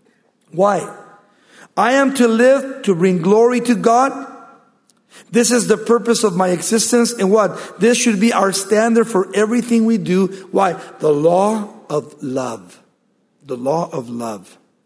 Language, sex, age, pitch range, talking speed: English, male, 50-69, 155-230 Hz, 150 wpm